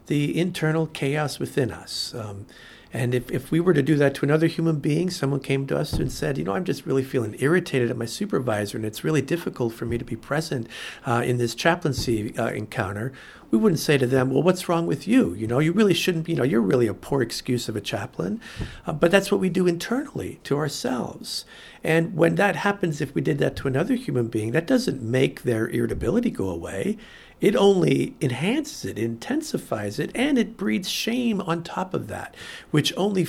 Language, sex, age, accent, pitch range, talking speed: English, male, 50-69, American, 120-175 Hz, 215 wpm